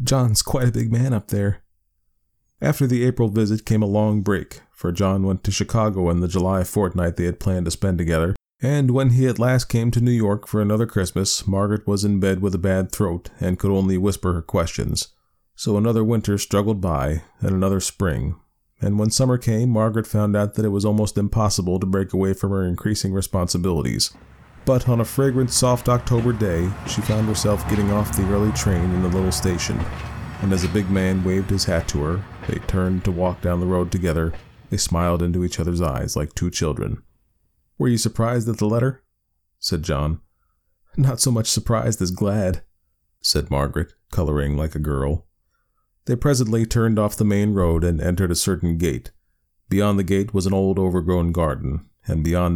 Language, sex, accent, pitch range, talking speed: English, male, American, 90-110 Hz, 195 wpm